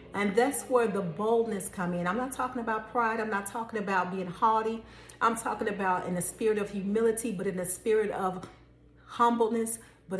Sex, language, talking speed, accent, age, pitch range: female, English, 195 wpm, American, 40-59, 180-225 Hz